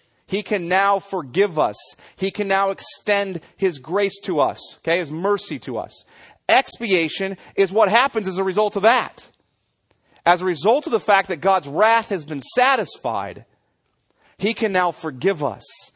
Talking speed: 165 wpm